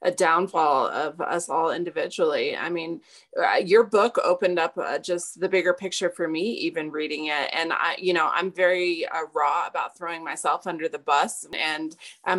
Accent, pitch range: American, 175-210 Hz